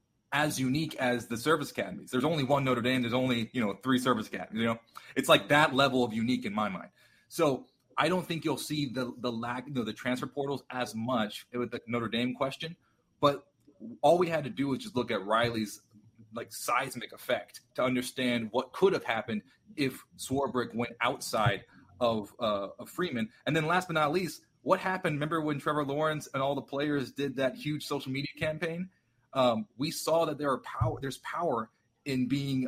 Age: 30-49